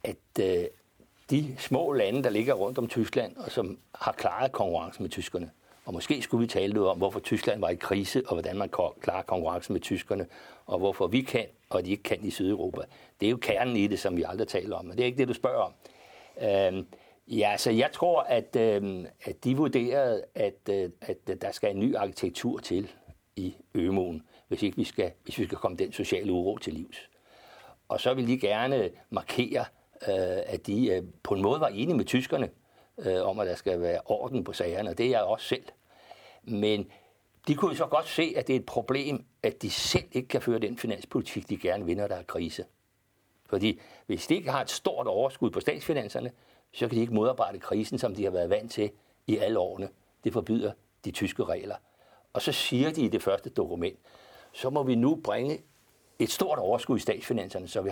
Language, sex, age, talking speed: Danish, male, 60-79, 210 wpm